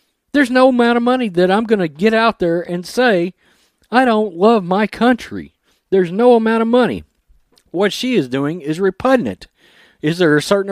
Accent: American